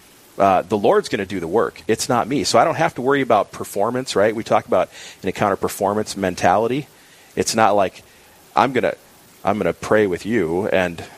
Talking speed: 215 wpm